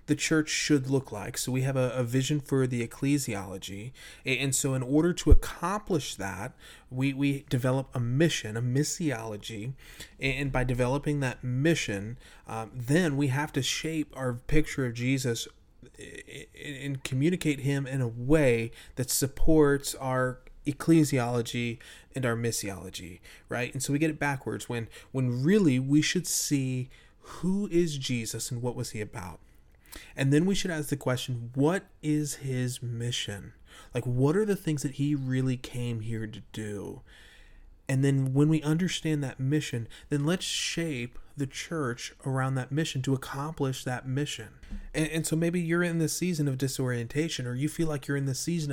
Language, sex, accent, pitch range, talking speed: English, male, American, 120-150 Hz, 170 wpm